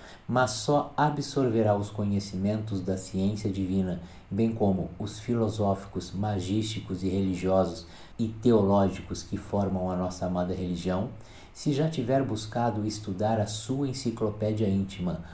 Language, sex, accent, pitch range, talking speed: Portuguese, male, Brazilian, 95-115 Hz, 125 wpm